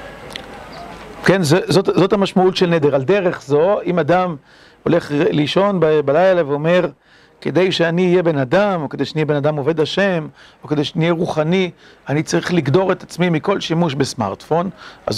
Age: 50-69